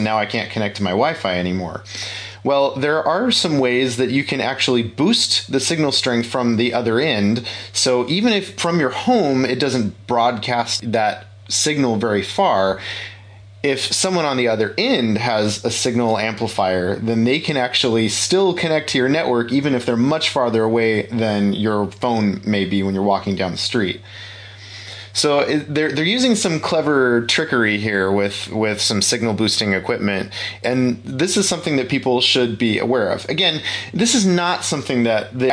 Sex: male